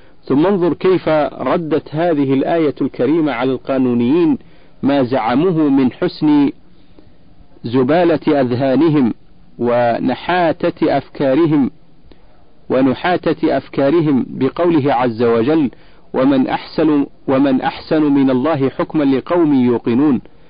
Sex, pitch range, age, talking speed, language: male, 130-165 Hz, 50-69, 90 wpm, Arabic